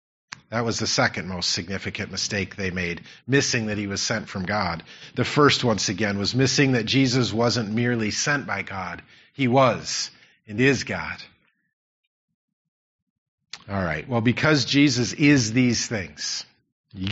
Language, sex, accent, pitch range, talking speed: English, male, American, 105-145 Hz, 150 wpm